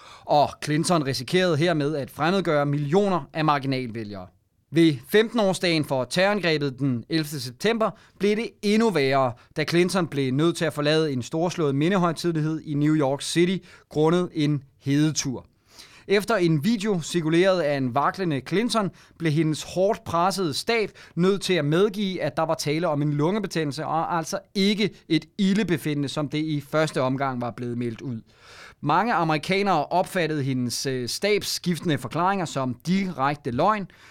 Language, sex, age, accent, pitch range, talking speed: Danish, male, 30-49, native, 140-180 Hz, 150 wpm